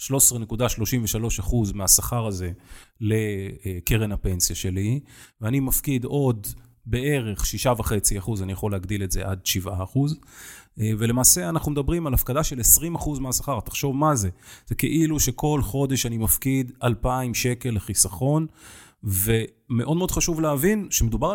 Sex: male